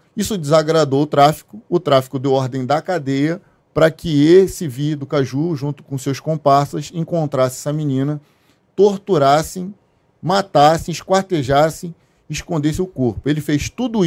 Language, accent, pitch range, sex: Portuguese, Brazilian, 135-170 Hz, male